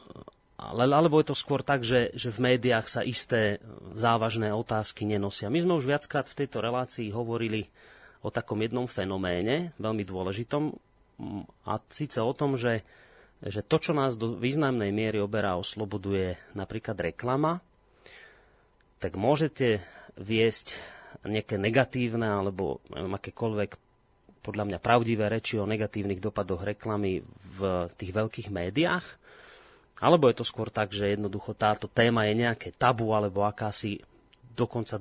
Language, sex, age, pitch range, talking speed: Slovak, male, 30-49, 100-125 Hz, 135 wpm